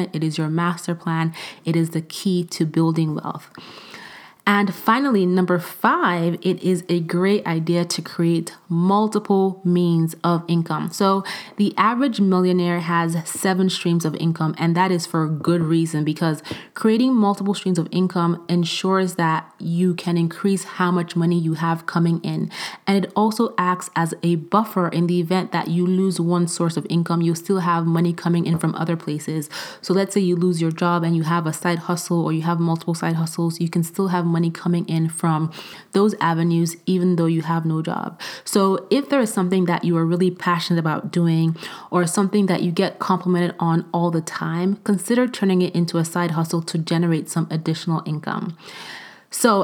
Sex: female